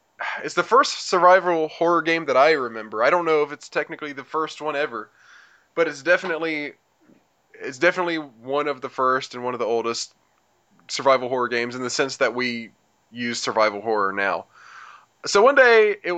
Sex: male